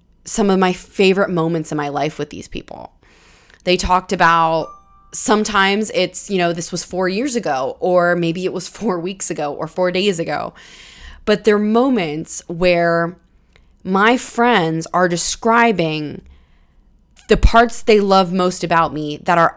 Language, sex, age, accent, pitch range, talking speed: English, female, 20-39, American, 160-200 Hz, 155 wpm